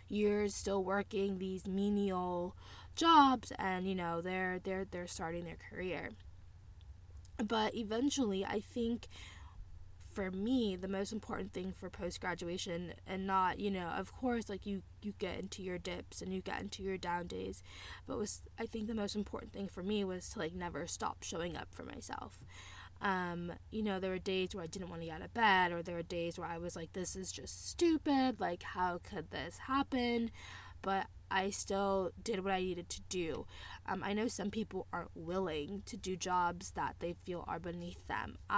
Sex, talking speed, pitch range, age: female, 190 wpm, 170-200 Hz, 10-29